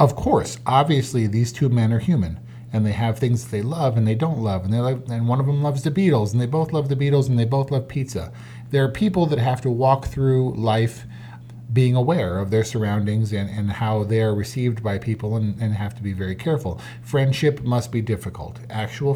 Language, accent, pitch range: English, American, 110-130 Hz